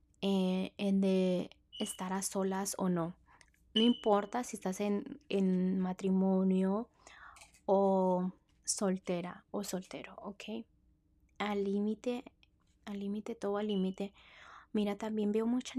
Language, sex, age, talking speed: Spanish, female, 20-39, 120 wpm